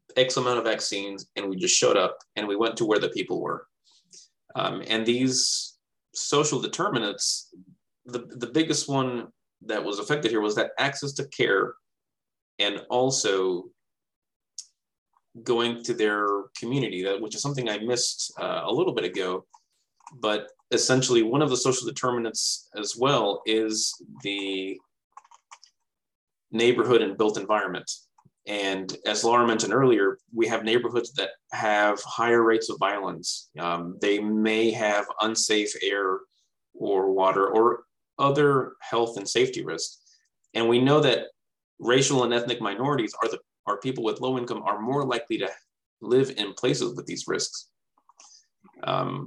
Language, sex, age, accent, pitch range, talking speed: English, male, 20-39, American, 105-135 Hz, 145 wpm